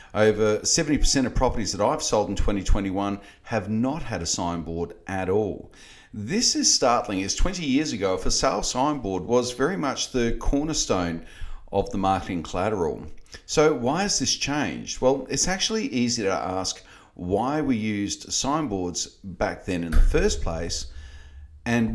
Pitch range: 90-115 Hz